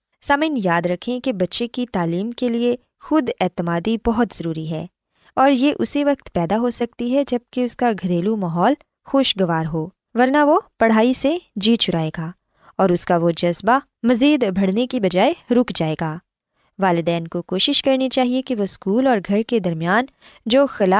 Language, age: Urdu, 20-39